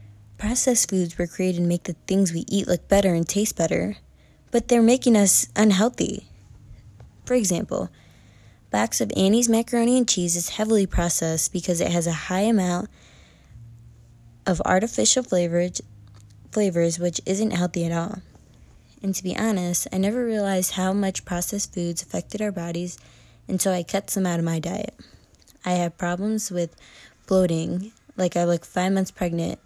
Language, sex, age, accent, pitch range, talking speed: English, female, 20-39, American, 165-195 Hz, 160 wpm